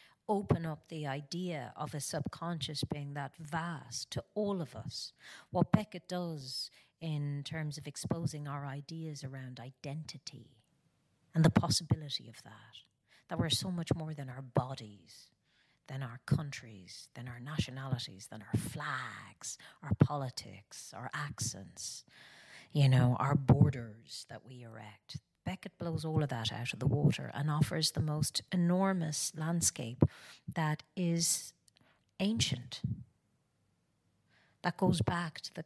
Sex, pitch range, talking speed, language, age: female, 125-165 Hz, 135 wpm, English, 50-69